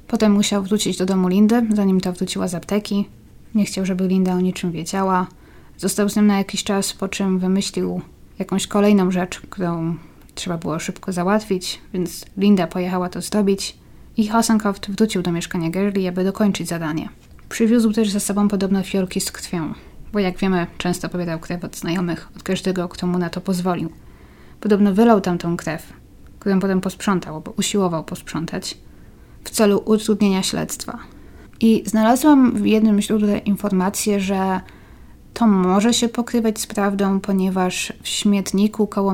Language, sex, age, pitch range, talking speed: Polish, female, 20-39, 180-210 Hz, 160 wpm